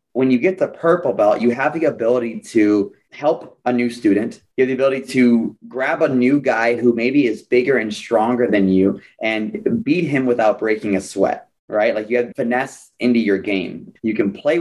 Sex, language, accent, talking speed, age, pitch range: male, English, American, 205 wpm, 30-49, 115-140 Hz